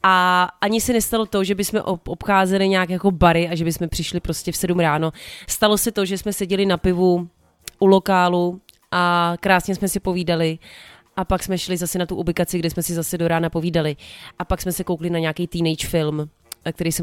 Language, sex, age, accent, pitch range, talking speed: Czech, female, 30-49, native, 165-190 Hz, 210 wpm